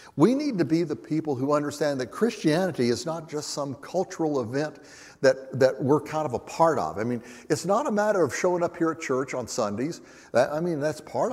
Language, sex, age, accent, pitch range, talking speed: English, male, 60-79, American, 140-185 Hz, 220 wpm